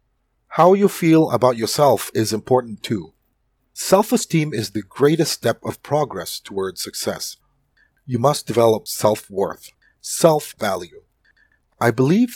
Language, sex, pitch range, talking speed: English, male, 110-155 Hz, 115 wpm